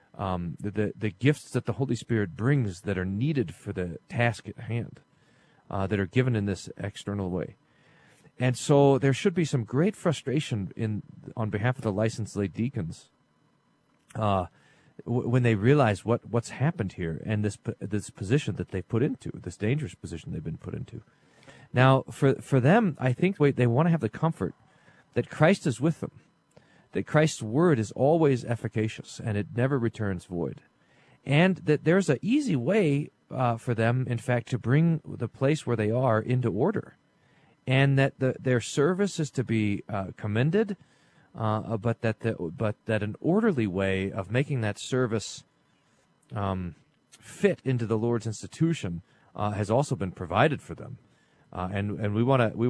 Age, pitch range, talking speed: 40-59, 105-140 Hz, 180 wpm